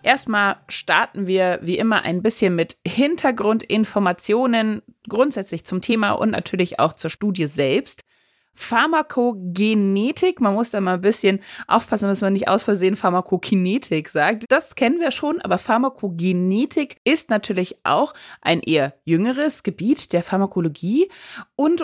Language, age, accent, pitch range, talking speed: German, 30-49, German, 175-230 Hz, 135 wpm